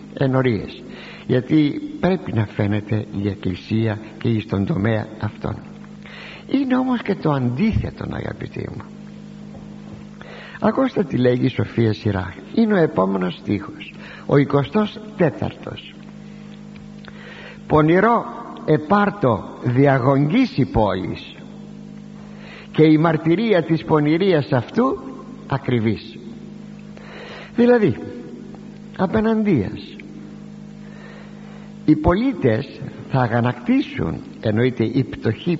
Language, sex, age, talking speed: Greek, male, 60-79, 90 wpm